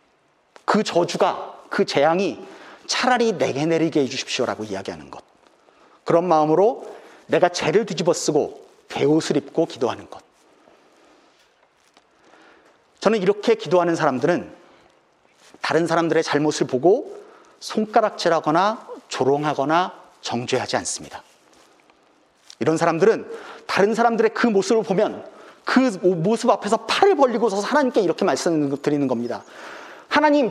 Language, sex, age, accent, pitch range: Korean, male, 40-59, native, 150-230 Hz